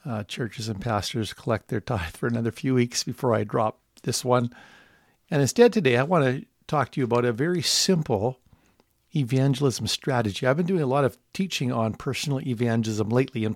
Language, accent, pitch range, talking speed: English, American, 120-145 Hz, 190 wpm